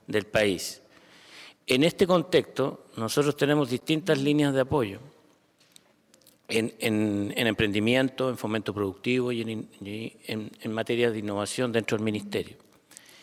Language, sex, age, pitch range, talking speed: English, male, 50-69, 110-135 Hz, 130 wpm